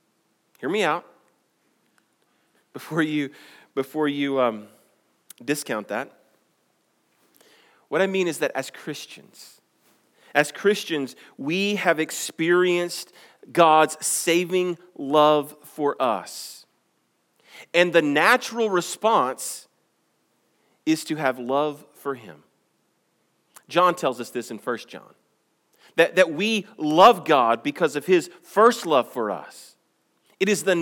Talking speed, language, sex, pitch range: 115 wpm, English, male, 140-180 Hz